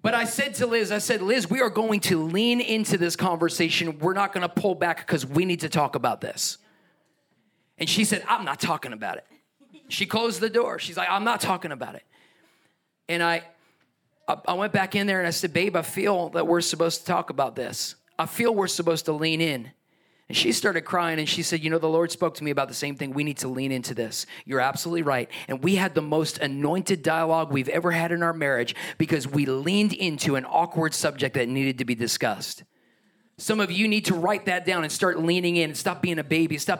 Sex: male